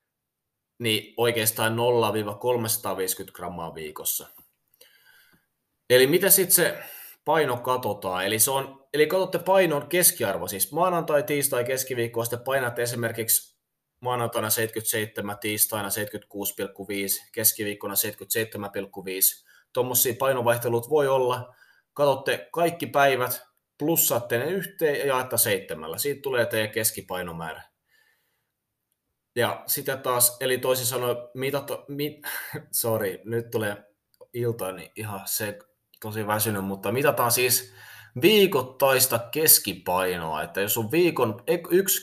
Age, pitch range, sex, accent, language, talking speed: 20-39, 110-145 Hz, male, native, Finnish, 105 wpm